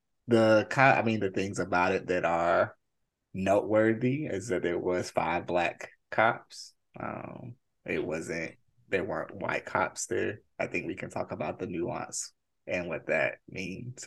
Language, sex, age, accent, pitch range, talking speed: English, male, 20-39, American, 100-120 Hz, 160 wpm